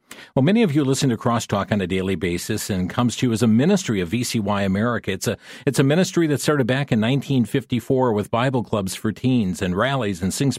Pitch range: 110-140 Hz